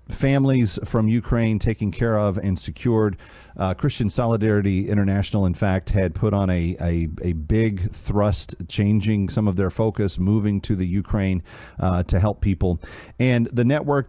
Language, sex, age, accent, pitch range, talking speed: English, male, 40-59, American, 95-115 Hz, 160 wpm